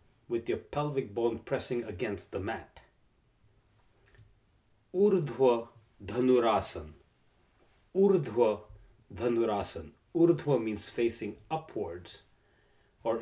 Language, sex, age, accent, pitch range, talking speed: English, male, 40-59, Indian, 105-135 Hz, 75 wpm